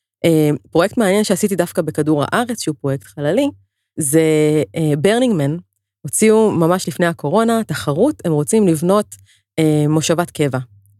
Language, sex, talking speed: Hebrew, female, 115 wpm